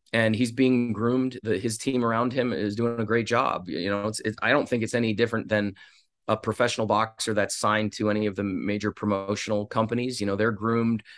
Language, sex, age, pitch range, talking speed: English, male, 20-39, 105-115 Hz, 220 wpm